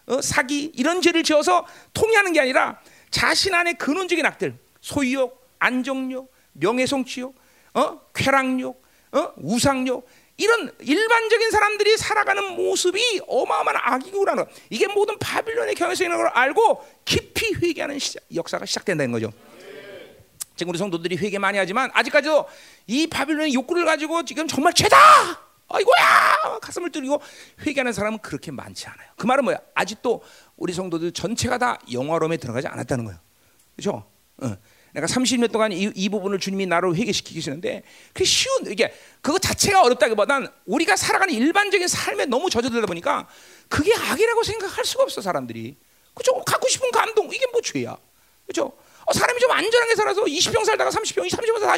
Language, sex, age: Korean, male, 40-59